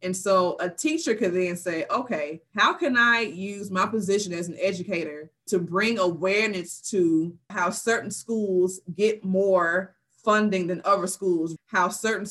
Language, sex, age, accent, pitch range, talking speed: English, female, 20-39, American, 175-210 Hz, 155 wpm